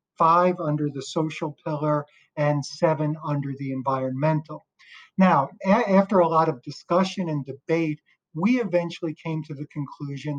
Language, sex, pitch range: English, male, 145-175 Hz